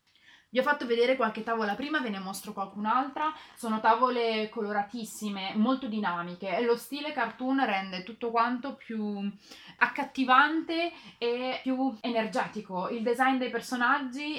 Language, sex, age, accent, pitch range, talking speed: Italian, female, 20-39, native, 200-265 Hz, 135 wpm